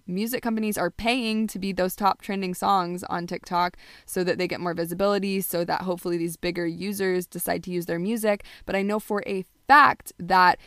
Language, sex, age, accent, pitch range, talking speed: English, female, 20-39, American, 180-230 Hz, 200 wpm